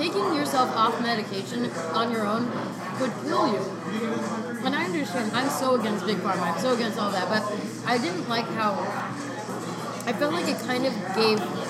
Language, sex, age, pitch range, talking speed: English, female, 30-49, 205-250 Hz, 180 wpm